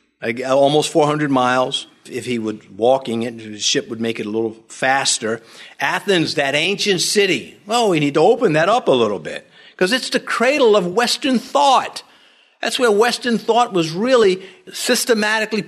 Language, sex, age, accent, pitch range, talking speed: English, male, 50-69, American, 130-215 Hz, 170 wpm